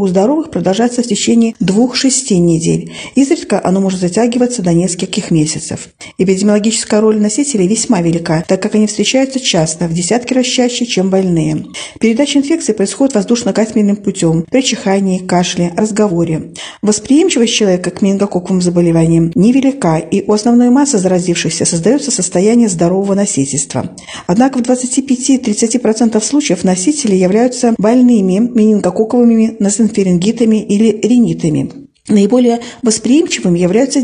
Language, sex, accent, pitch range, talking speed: Russian, female, native, 185-240 Hz, 120 wpm